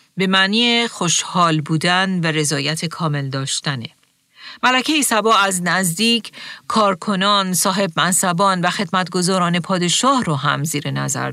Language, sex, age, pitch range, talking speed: Persian, female, 40-59, 160-215 Hz, 115 wpm